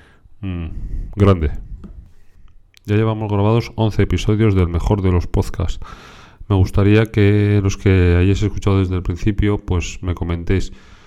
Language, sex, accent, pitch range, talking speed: Spanish, male, Spanish, 85-95 Hz, 135 wpm